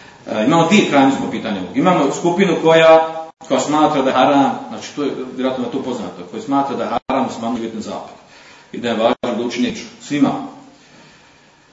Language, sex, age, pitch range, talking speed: Croatian, male, 40-59, 125-165 Hz, 175 wpm